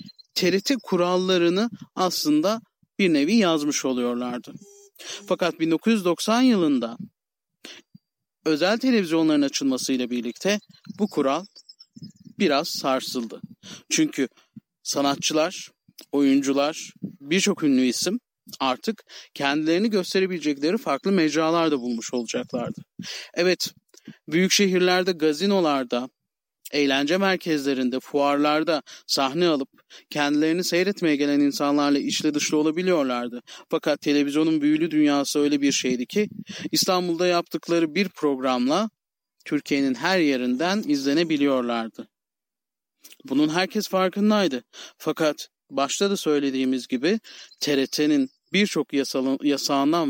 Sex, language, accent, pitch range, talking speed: male, Turkish, native, 140-195 Hz, 90 wpm